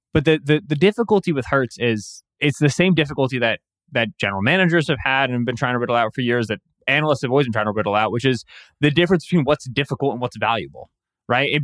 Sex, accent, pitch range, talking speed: male, American, 125-165 Hz, 240 wpm